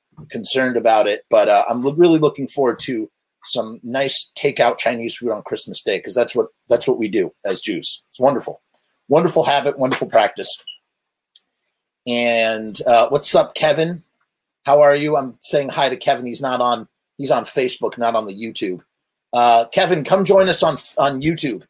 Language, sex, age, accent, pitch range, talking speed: English, male, 30-49, American, 120-185 Hz, 175 wpm